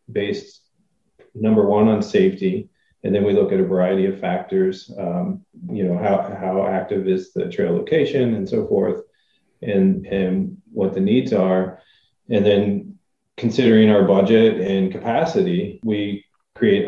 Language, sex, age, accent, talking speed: English, male, 40-59, American, 150 wpm